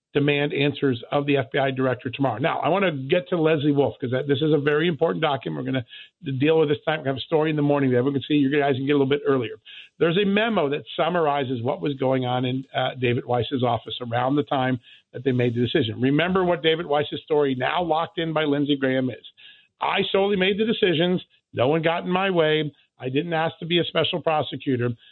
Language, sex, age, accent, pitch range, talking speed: English, male, 50-69, American, 135-170 Hz, 240 wpm